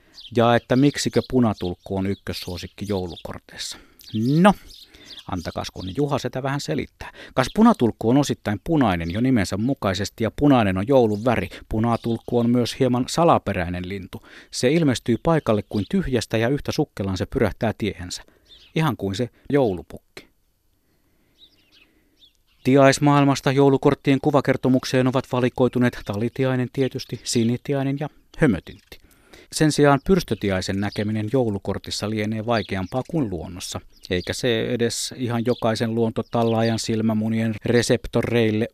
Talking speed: 115 wpm